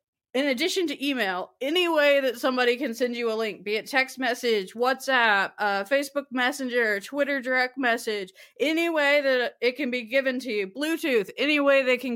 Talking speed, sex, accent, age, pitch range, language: 190 wpm, female, American, 20-39, 205-255 Hz, English